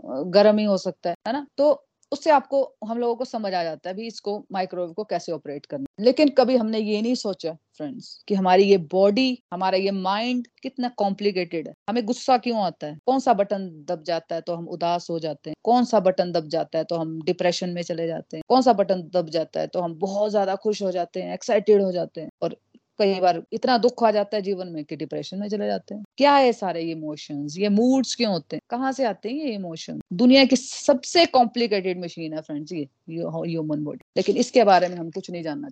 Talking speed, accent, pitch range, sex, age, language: 160 wpm, native, 175-245 Hz, female, 30-49, Hindi